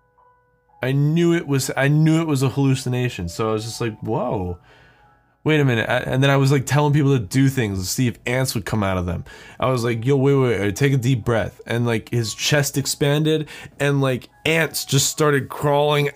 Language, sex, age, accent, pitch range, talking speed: English, male, 20-39, American, 110-145 Hz, 225 wpm